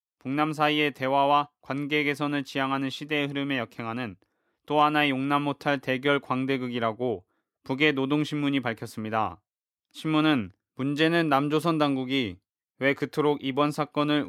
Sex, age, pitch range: male, 20-39, 125-150 Hz